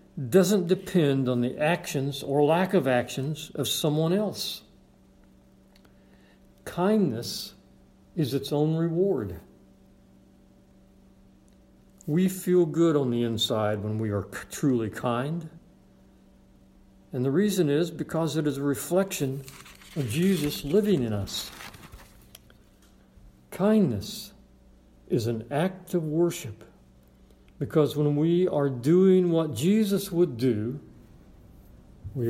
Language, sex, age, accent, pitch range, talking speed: English, male, 60-79, American, 100-145 Hz, 110 wpm